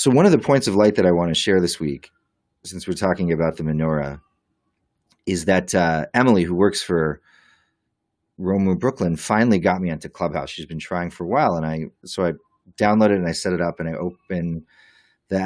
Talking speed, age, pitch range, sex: 215 wpm, 30-49, 85-100 Hz, male